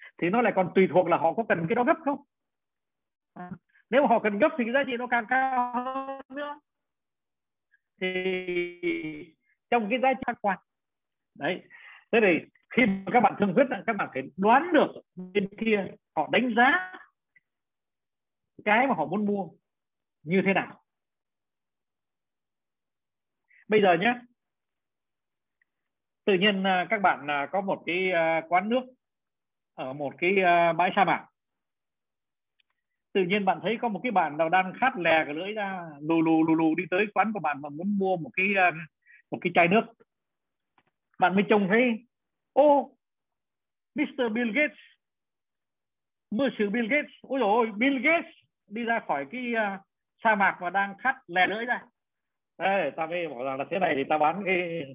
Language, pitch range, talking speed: Vietnamese, 175-245 Hz, 160 wpm